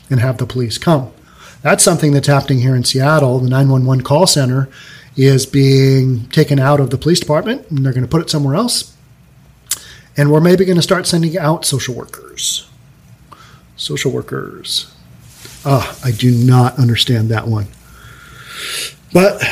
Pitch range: 130-165 Hz